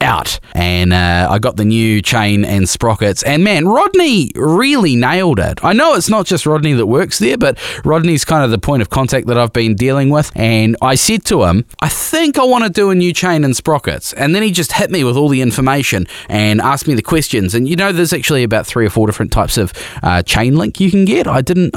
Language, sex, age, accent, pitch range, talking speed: English, male, 20-39, Australian, 100-145 Hz, 245 wpm